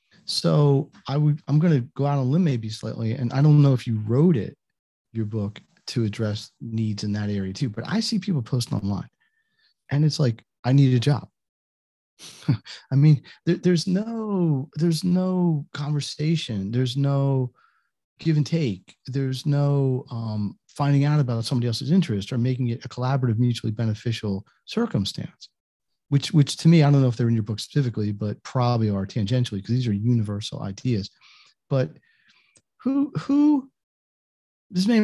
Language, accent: English, American